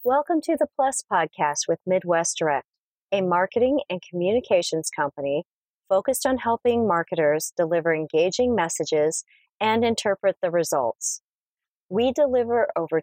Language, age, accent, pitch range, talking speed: English, 40-59, American, 165-240 Hz, 125 wpm